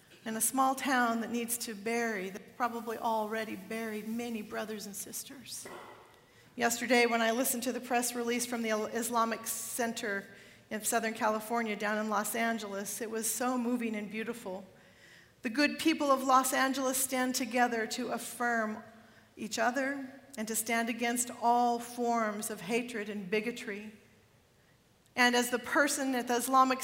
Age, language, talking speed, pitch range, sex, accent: 40-59, English, 155 wpm, 225-270 Hz, female, American